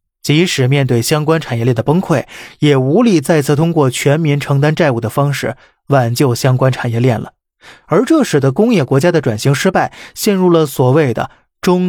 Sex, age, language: male, 20-39, Chinese